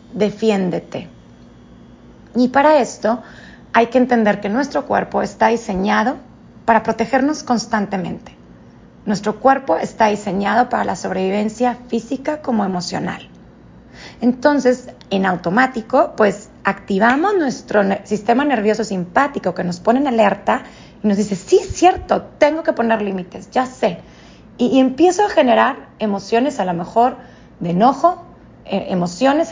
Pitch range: 195-265 Hz